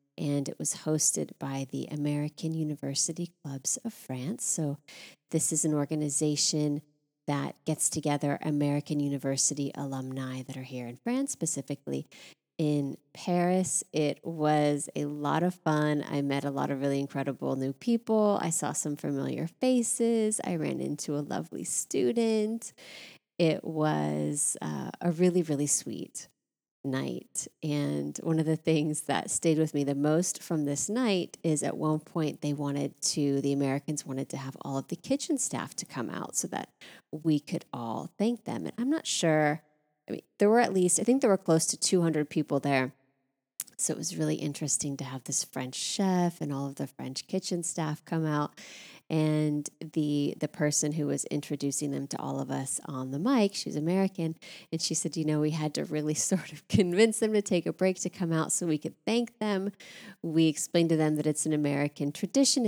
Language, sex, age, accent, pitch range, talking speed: English, female, 30-49, American, 145-180 Hz, 185 wpm